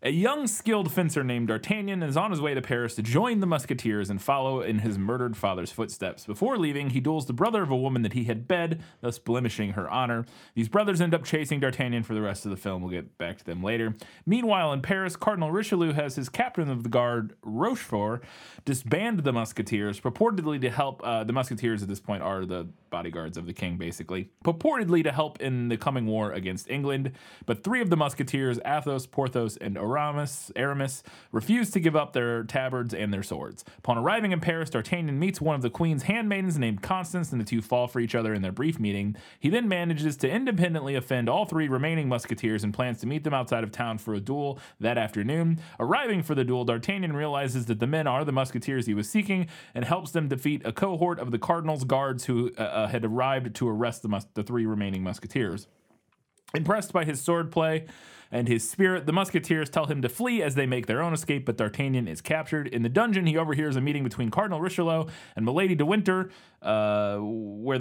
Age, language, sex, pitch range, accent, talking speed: 30-49, English, male, 115-165 Hz, American, 215 wpm